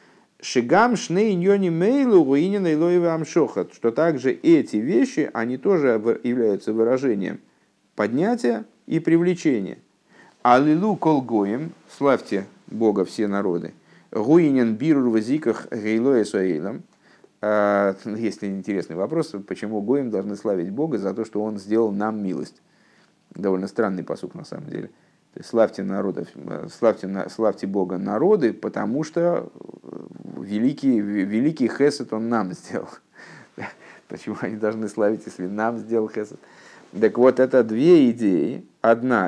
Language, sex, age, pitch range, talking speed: Russian, male, 50-69, 100-130 Hz, 100 wpm